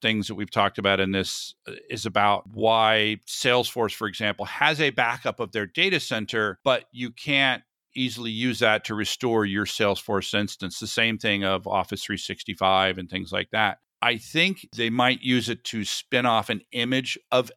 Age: 50-69